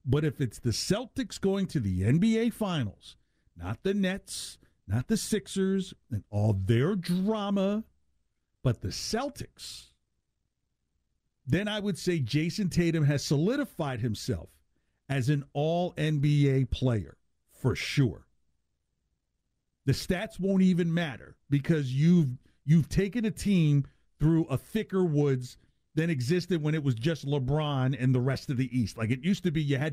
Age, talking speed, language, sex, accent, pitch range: 50-69, 145 wpm, English, male, American, 115-175 Hz